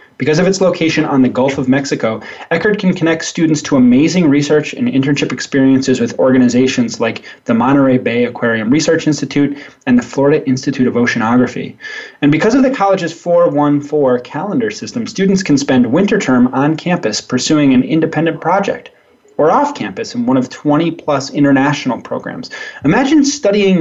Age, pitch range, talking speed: 20-39, 130-170 Hz, 165 wpm